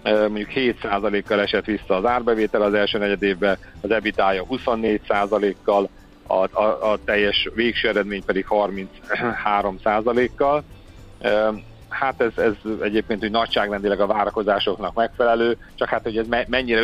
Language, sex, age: Hungarian, male, 50-69